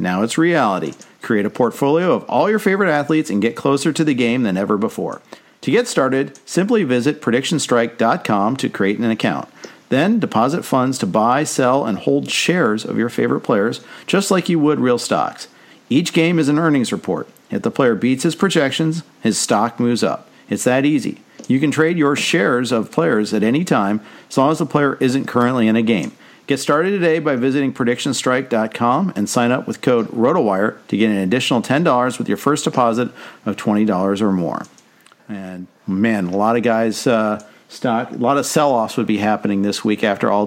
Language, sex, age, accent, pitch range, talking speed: English, male, 50-69, American, 110-150 Hz, 195 wpm